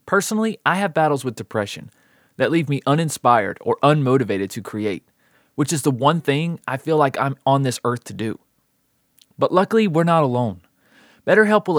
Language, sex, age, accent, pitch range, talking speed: English, male, 30-49, American, 115-155 Hz, 180 wpm